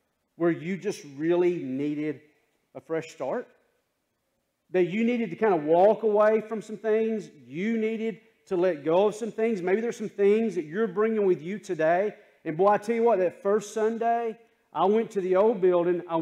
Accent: American